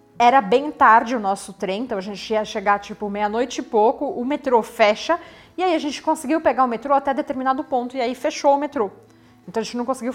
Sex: female